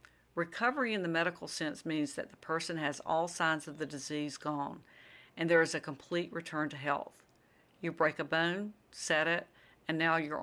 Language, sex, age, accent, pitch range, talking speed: English, female, 50-69, American, 150-170 Hz, 190 wpm